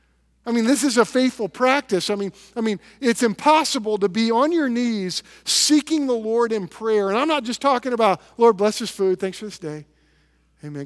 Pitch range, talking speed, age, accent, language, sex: 150-225 Hz, 210 wpm, 50-69, American, English, male